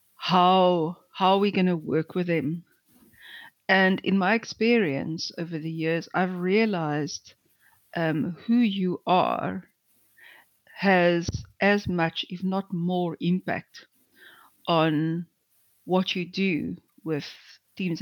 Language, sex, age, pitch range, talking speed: English, female, 50-69, 165-190 Hz, 115 wpm